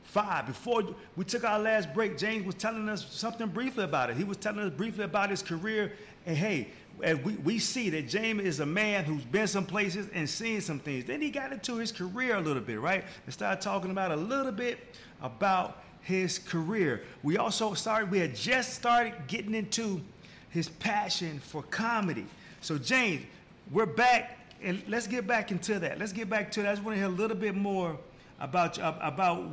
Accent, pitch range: American, 160-215 Hz